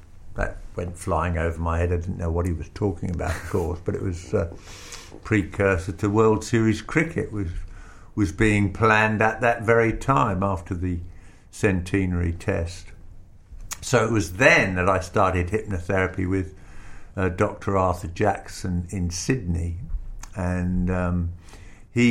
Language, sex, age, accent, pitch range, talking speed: English, male, 50-69, British, 85-100 Hz, 150 wpm